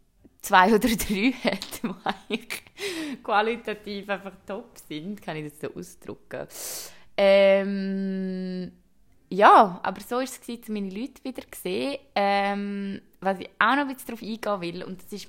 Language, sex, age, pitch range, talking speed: German, female, 20-39, 175-210 Hz, 155 wpm